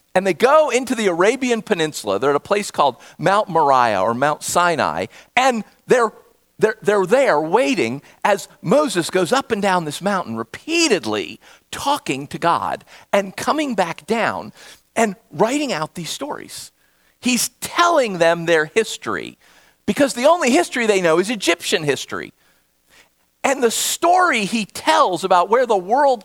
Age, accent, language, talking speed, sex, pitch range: 50-69, American, English, 155 wpm, male, 190-275 Hz